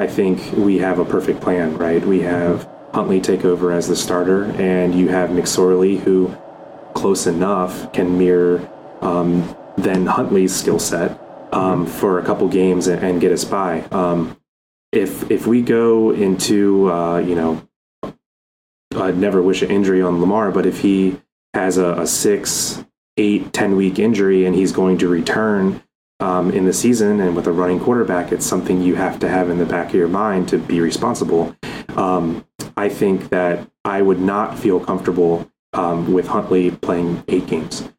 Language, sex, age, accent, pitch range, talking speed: English, male, 30-49, American, 85-95 Hz, 175 wpm